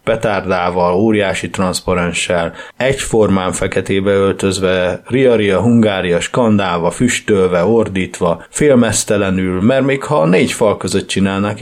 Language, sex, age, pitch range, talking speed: Hungarian, male, 30-49, 95-115 Hz, 95 wpm